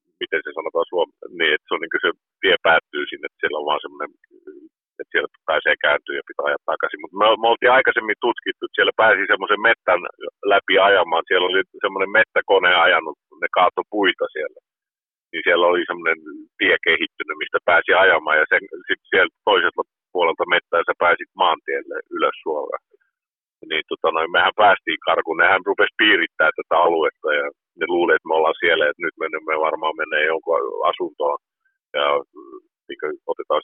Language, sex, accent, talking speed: Finnish, male, native, 170 wpm